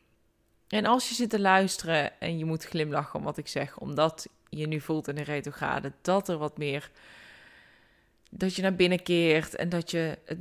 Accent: Dutch